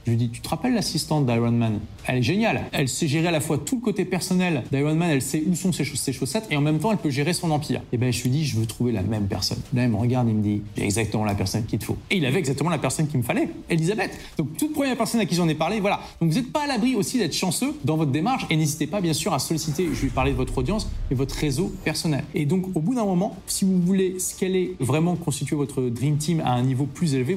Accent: French